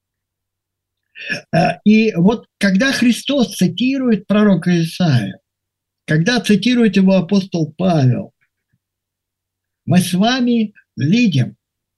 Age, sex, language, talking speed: 50-69, male, Russian, 80 wpm